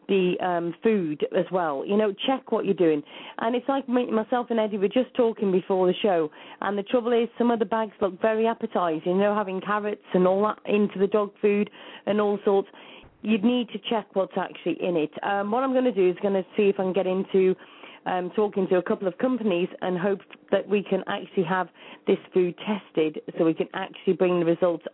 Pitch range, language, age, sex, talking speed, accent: 180-225 Hz, English, 40-59, female, 230 wpm, British